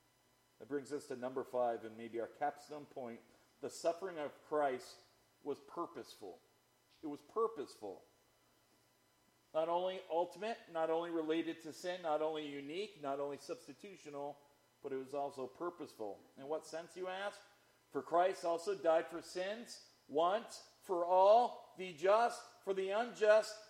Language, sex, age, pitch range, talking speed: English, male, 40-59, 145-180 Hz, 145 wpm